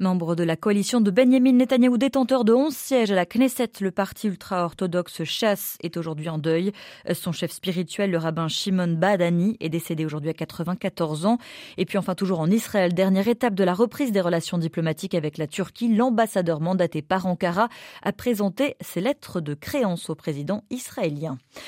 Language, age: French, 20-39